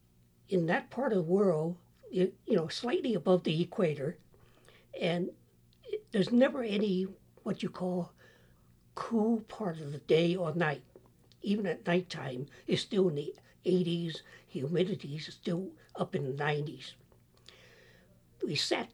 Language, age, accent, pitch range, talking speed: English, 60-79, American, 130-195 Hz, 135 wpm